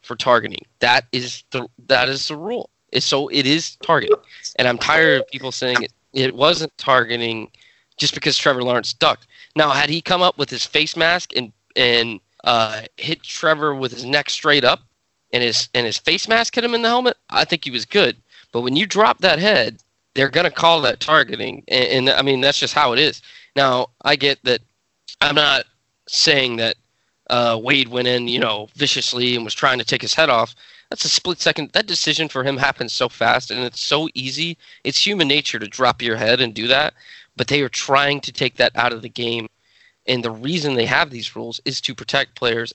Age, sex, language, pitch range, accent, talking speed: 20-39, male, English, 120-150 Hz, American, 215 wpm